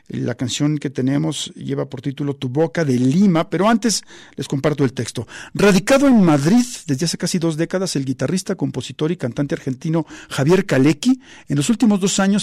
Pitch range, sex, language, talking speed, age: 135-190 Hz, male, Spanish, 185 wpm, 50-69